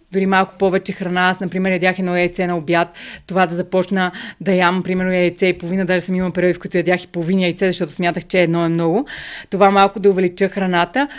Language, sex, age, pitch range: Bulgarian, female, 20-39, 180-205 Hz